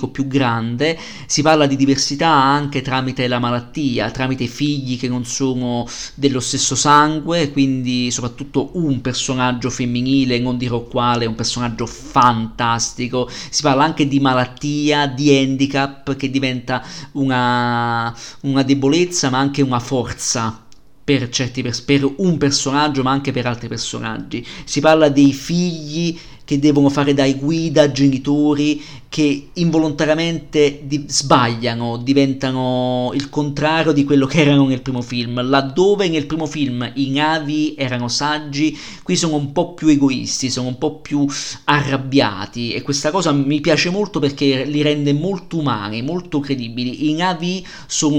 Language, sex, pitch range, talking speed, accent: Italian, male, 125-150 Hz, 140 wpm, native